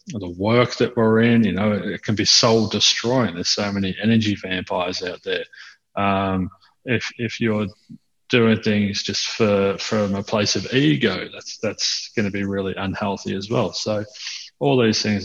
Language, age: English, 30-49